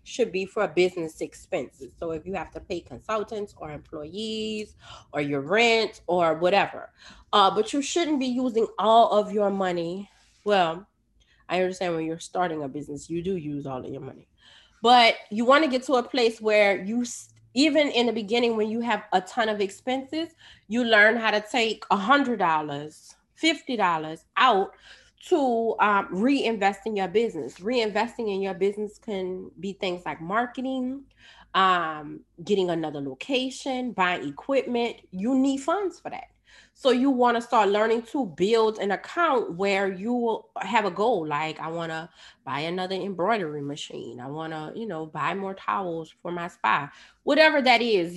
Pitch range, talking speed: 170-235 Hz, 170 wpm